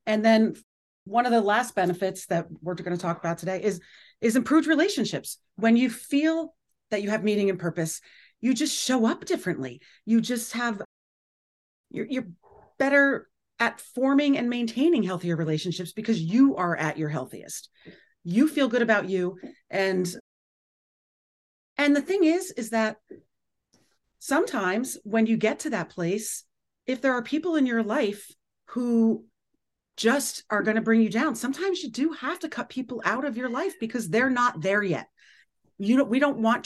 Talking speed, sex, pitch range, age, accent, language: 170 wpm, female, 190-255 Hz, 40-59, American, English